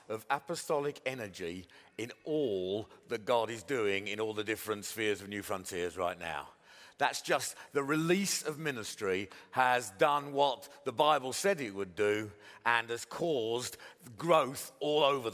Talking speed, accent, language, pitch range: 155 wpm, British, English, 120-160 Hz